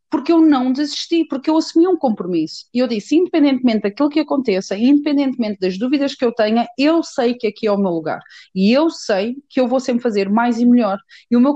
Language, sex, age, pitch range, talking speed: Portuguese, female, 30-49, 225-300 Hz, 230 wpm